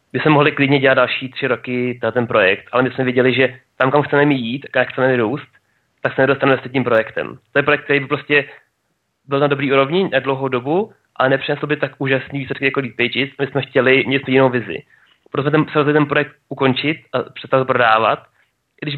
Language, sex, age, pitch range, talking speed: Czech, male, 30-49, 130-145 Hz, 210 wpm